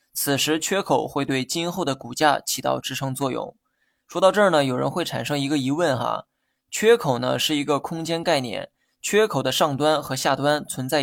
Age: 20-39